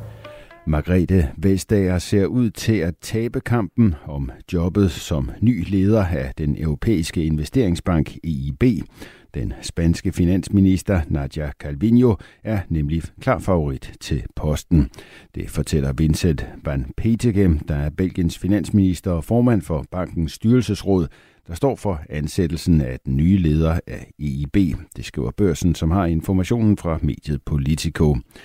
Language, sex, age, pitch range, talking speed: Danish, male, 60-79, 75-100 Hz, 130 wpm